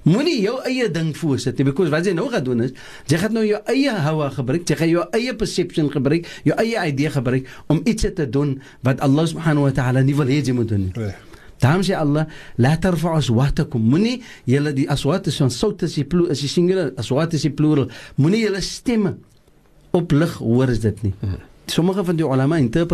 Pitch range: 135-195 Hz